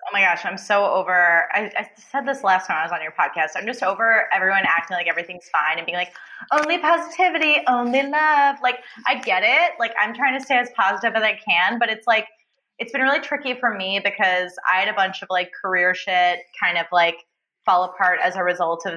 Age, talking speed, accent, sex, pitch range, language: 20-39, 230 wpm, American, female, 180-245 Hz, English